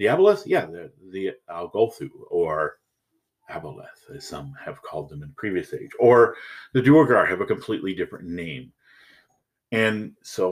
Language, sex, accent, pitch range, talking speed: English, male, American, 95-135 Hz, 150 wpm